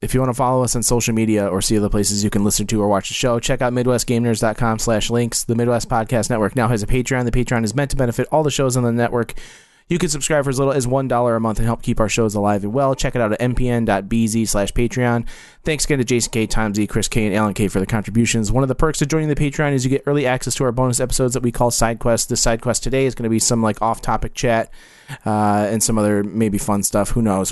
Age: 30-49